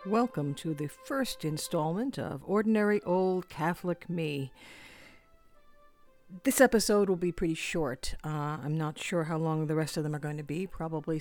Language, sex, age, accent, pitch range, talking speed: English, female, 50-69, American, 150-185 Hz, 165 wpm